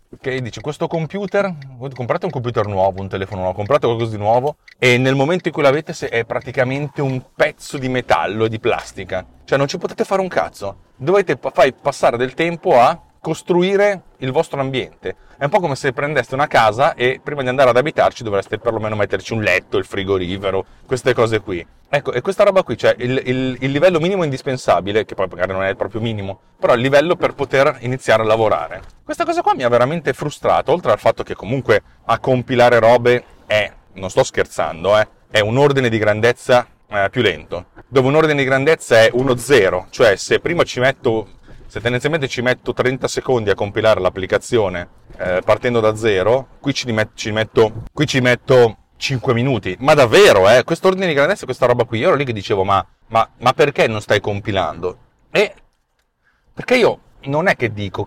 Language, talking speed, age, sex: Italian, 195 wpm, 30-49, male